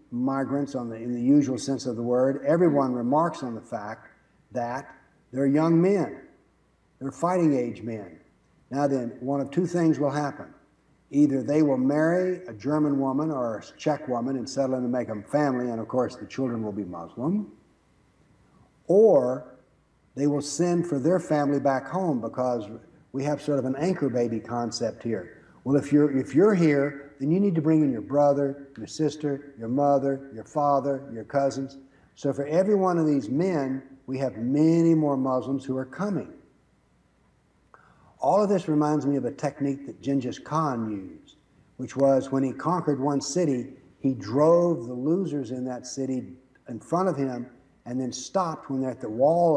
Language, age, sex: English, 60-79, male